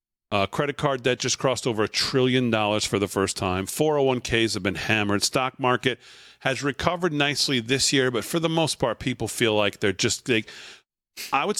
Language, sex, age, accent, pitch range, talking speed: English, male, 40-59, American, 110-135 Hz, 190 wpm